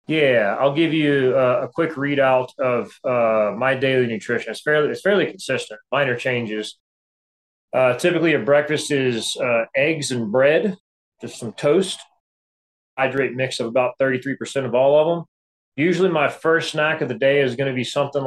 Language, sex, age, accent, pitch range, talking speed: English, male, 30-49, American, 120-145 Hz, 175 wpm